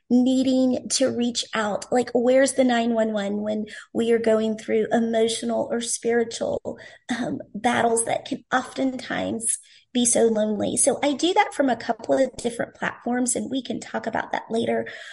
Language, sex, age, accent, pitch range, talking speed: English, female, 30-49, American, 225-265 Hz, 165 wpm